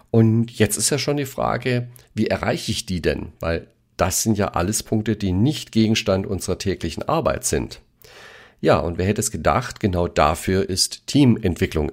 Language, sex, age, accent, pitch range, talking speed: German, male, 40-59, German, 90-115 Hz, 175 wpm